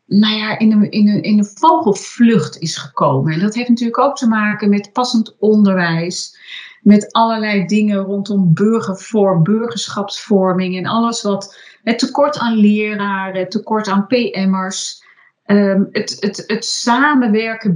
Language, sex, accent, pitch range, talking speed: English, female, Dutch, 185-230 Hz, 125 wpm